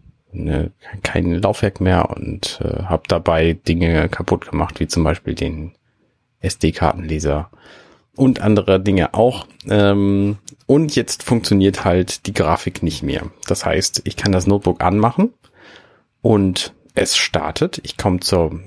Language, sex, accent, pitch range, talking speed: German, male, German, 95-125 Hz, 135 wpm